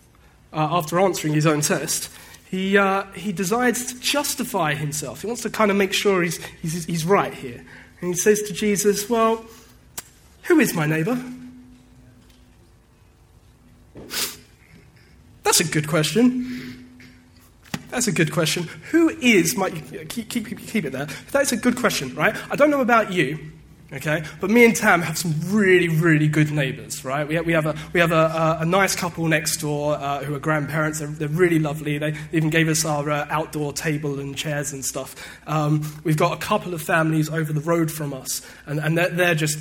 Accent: British